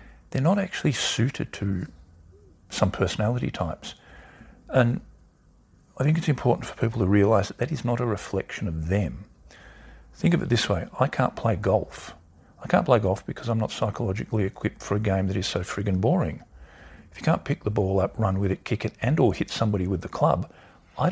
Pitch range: 85-110 Hz